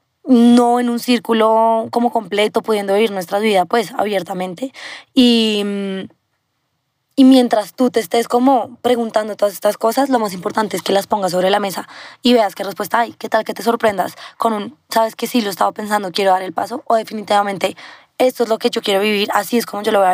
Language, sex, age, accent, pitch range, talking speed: Spanish, female, 20-39, Colombian, 200-230 Hz, 215 wpm